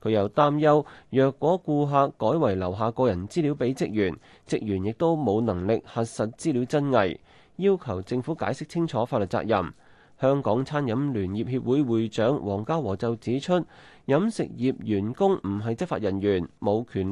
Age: 30-49